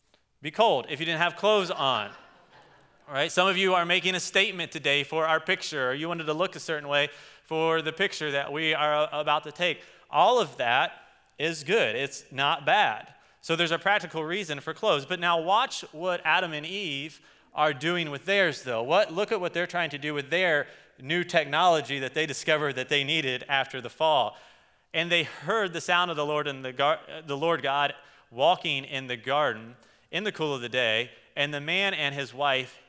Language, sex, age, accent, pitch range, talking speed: English, male, 30-49, American, 130-170 Hz, 210 wpm